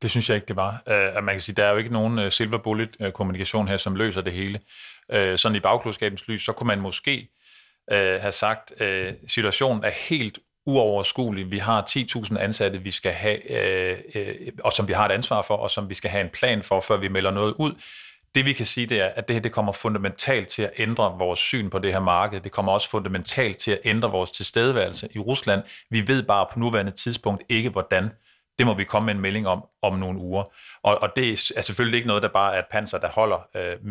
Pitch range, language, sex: 95-115 Hz, Danish, male